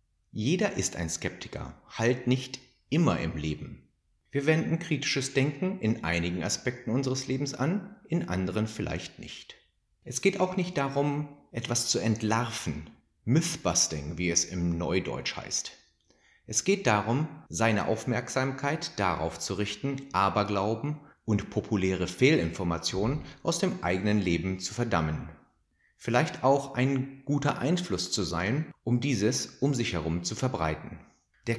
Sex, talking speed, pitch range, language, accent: male, 135 wpm, 95-145 Hz, German, German